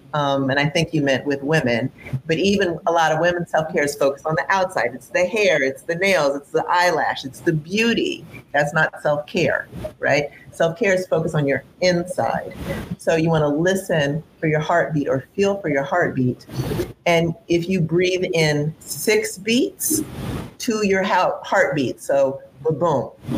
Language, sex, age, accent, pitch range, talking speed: English, female, 40-59, American, 140-180 Hz, 170 wpm